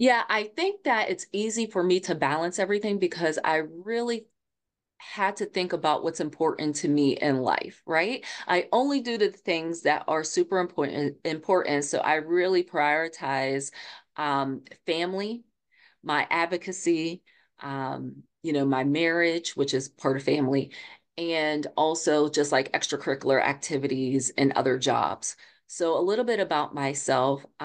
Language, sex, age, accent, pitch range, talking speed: English, female, 30-49, American, 140-180 Hz, 150 wpm